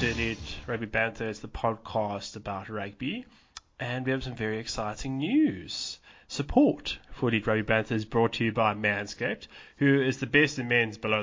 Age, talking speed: 20-39, 170 wpm